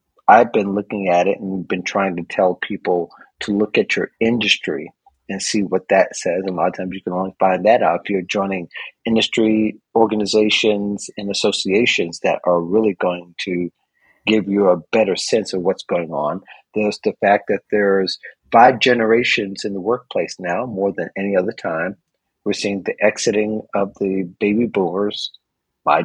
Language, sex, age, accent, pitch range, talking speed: English, male, 40-59, American, 95-110 Hz, 175 wpm